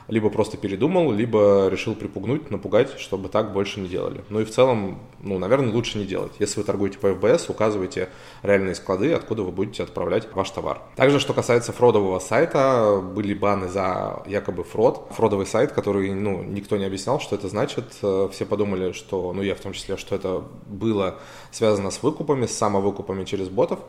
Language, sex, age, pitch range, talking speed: Russian, male, 20-39, 95-110 Hz, 185 wpm